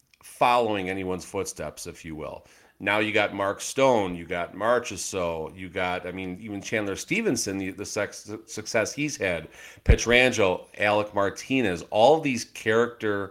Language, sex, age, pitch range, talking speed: English, male, 40-59, 95-115 Hz, 150 wpm